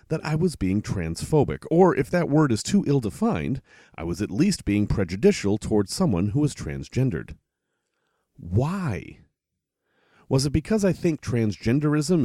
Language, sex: English, male